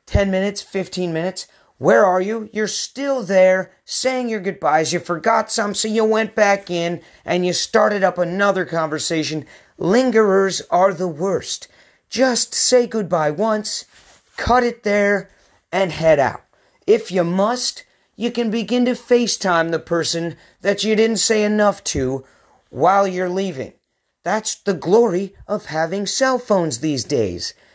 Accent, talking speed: American, 150 wpm